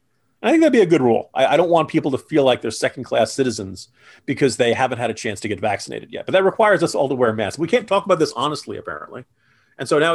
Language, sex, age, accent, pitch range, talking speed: English, male, 40-59, American, 125-180 Hz, 270 wpm